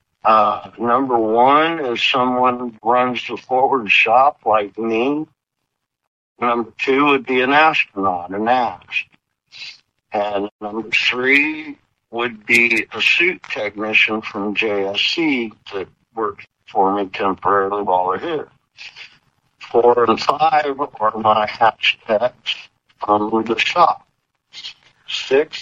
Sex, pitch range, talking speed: male, 110-145 Hz, 110 wpm